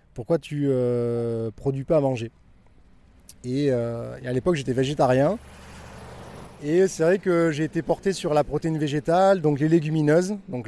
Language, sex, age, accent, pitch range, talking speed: French, male, 20-39, French, 115-145 Hz, 175 wpm